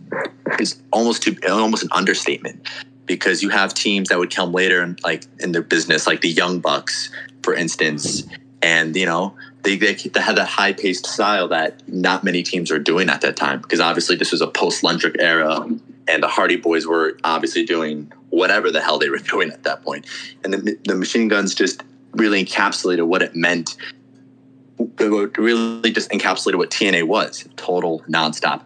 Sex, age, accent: male, 20-39, American